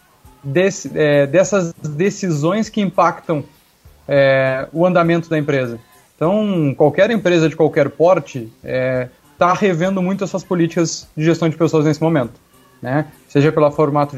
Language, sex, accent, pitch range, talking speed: Portuguese, male, Brazilian, 150-185 Hz, 140 wpm